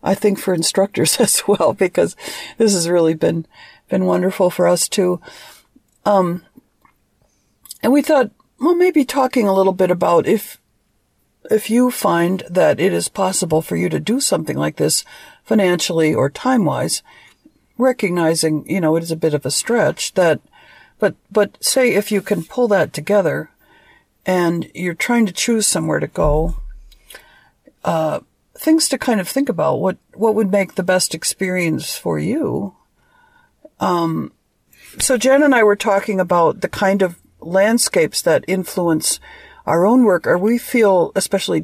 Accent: American